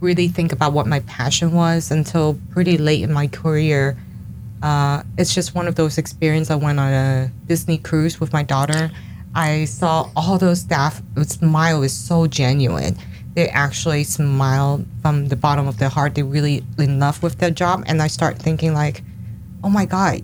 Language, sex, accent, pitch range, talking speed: English, female, American, 140-165 Hz, 185 wpm